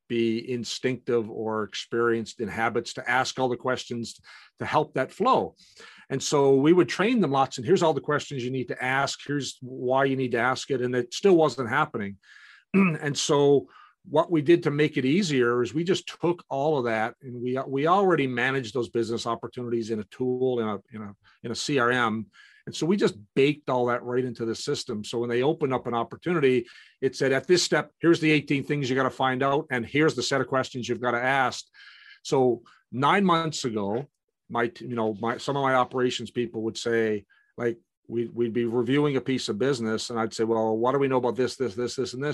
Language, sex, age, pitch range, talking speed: English, male, 50-69, 120-140 Hz, 225 wpm